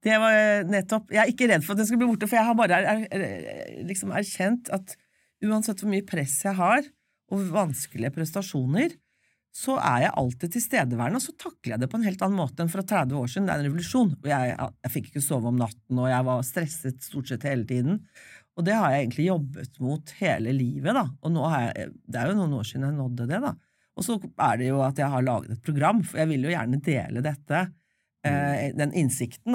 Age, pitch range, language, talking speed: 40-59, 130-195 Hz, English, 235 wpm